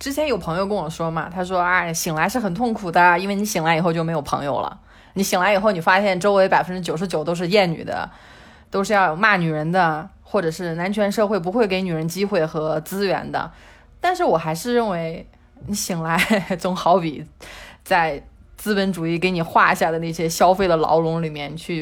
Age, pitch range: 20-39, 165-210 Hz